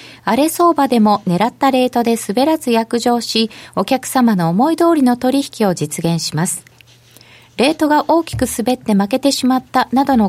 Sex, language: female, Japanese